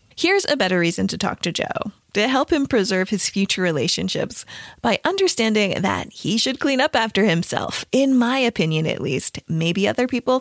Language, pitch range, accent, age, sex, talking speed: English, 175-250 Hz, American, 20-39, female, 185 wpm